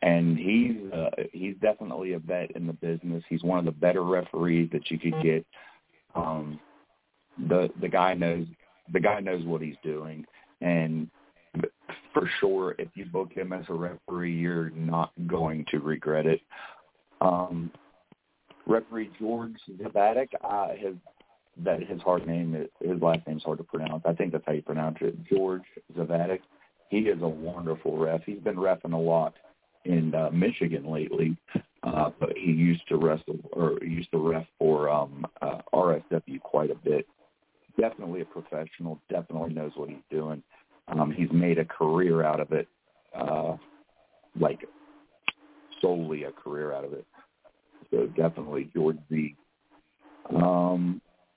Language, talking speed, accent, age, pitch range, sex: English, 155 wpm, American, 40-59, 80-95 Hz, male